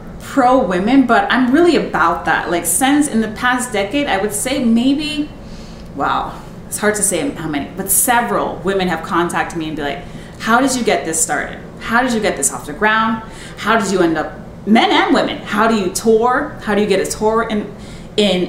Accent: American